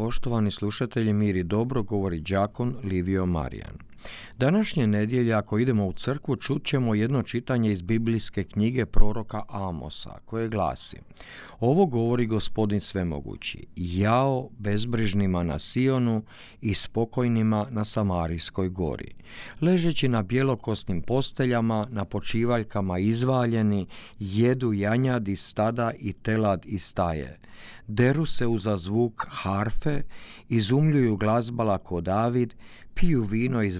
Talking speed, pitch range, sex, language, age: 115 wpm, 100-125 Hz, male, Croatian, 50-69